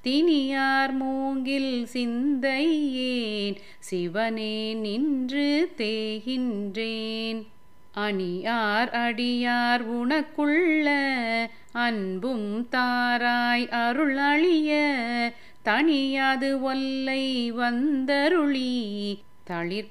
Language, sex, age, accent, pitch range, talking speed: Tamil, female, 30-49, native, 220-275 Hz, 50 wpm